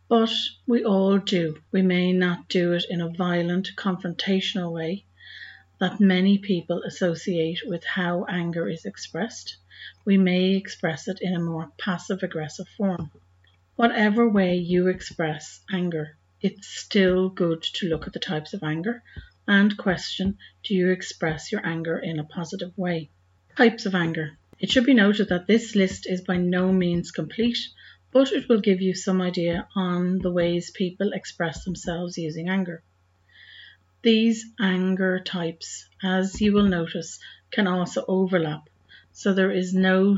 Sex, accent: female, Irish